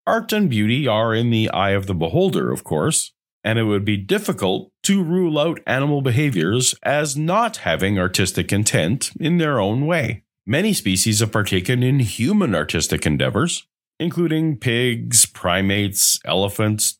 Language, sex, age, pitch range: English, male, 40-59, 95-140 Hz